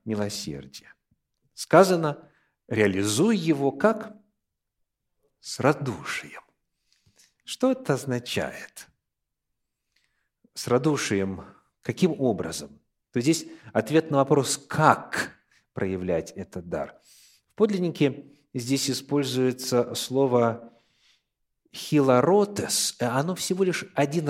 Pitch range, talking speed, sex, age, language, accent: 110-160 Hz, 85 wpm, male, 50-69, Russian, native